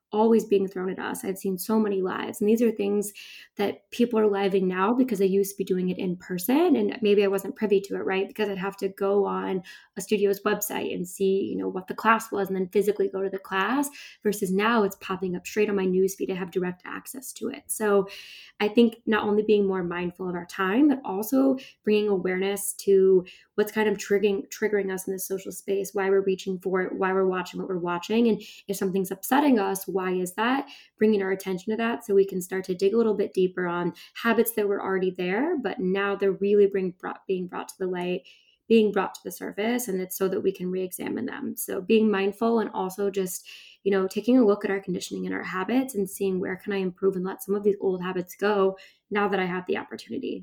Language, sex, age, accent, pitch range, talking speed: English, female, 10-29, American, 190-215 Hz, 240 wpm